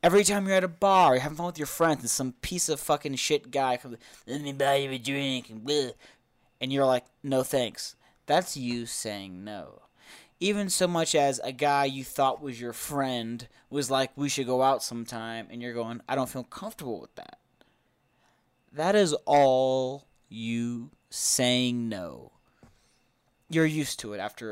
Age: 20-39